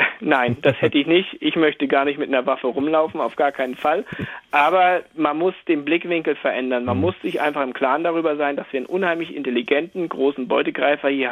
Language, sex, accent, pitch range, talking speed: German, male, German, 135-170 Hz, 205 wpm